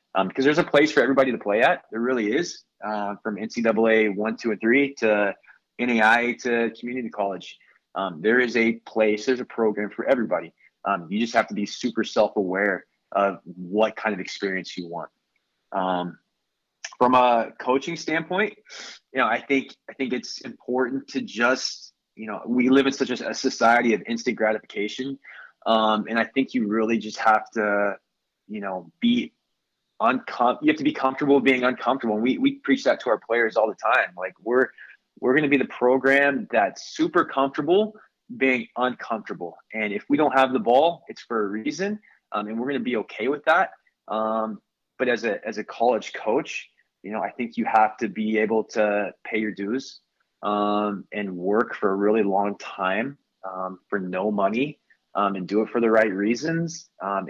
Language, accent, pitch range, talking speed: English, American, 105-135 Hz, 190 wpm